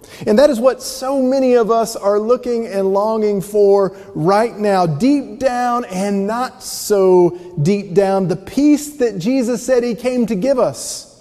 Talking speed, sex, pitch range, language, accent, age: 170 wpm, male, 190-255 Hz, English, American, 40-59